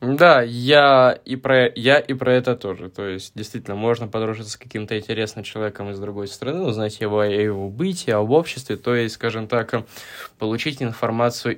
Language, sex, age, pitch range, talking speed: Russian, male, 20-39, 105-125 Hz, 180 wpm